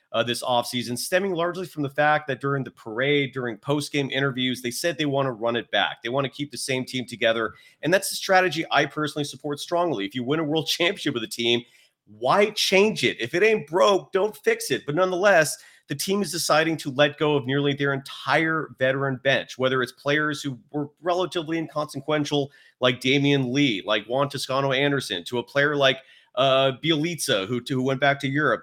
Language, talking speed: English, 210 wpm